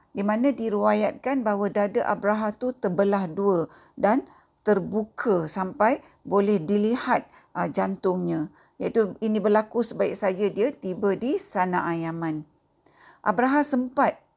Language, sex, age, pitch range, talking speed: Malay, female, 50-69, 185-235 Hz, 115 wpm